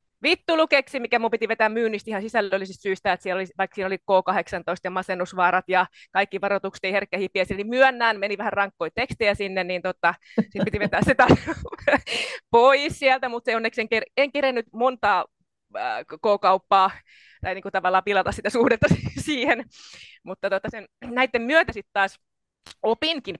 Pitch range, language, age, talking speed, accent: 190-245 Hz, Finnish, 20-39, 160 wpm, native